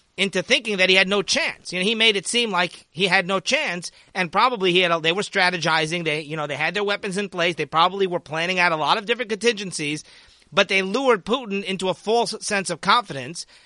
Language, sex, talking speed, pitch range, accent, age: English, male, 240 wpm, 160-200 Hz, American, 40-59